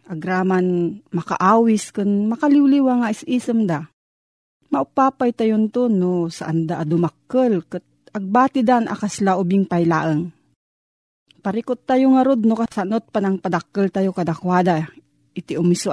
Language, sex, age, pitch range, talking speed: Filipino, female, 40-59, 180-245 Hz, 115 wpm